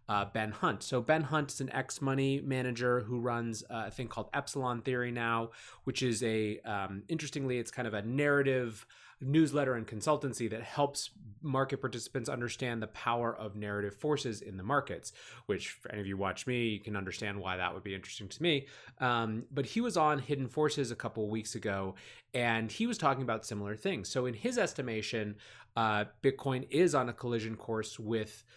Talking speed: 190 wpm